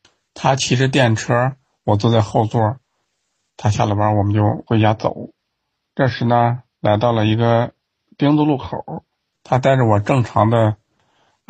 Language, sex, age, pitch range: Chinese, male, 50-69, 105-125 Hz